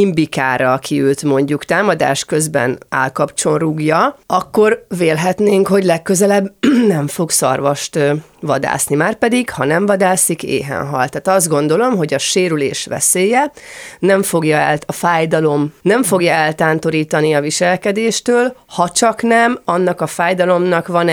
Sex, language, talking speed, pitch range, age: female, Hungarian, 130 wpm, 145-185 Hz, 30-49